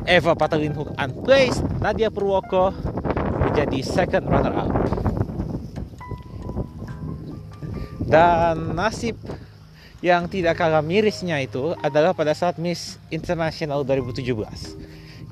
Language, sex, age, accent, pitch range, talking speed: Indonesian, male, 30-49, native, 130-185 Hz, 90 wpm